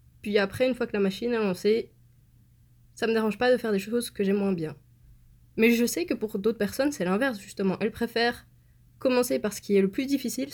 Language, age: French, 20-39